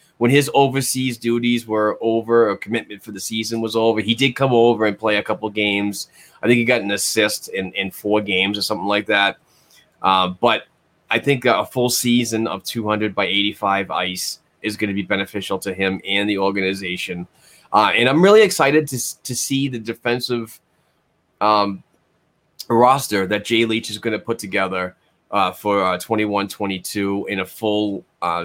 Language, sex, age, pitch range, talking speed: English, male, 20-39, 100-115 Hz, 180 wpm